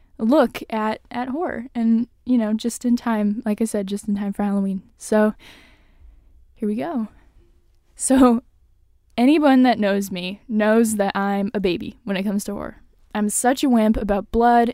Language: English